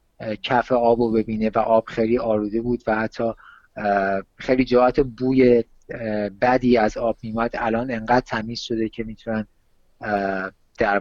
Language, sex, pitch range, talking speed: Persian, male, 110-135 Hz, 130 wpm